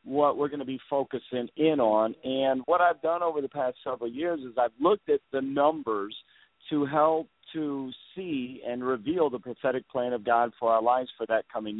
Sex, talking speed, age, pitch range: male, 205 wpm, 50-69, 125-155 Hz